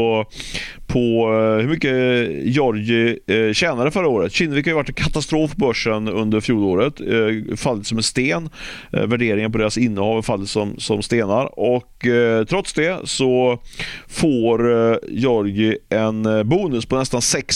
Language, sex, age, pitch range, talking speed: Swedish, male, 30-49, 105-130 Hz, 130 wpm